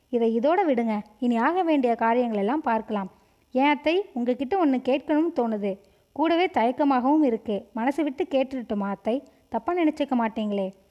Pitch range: 225-290 Hz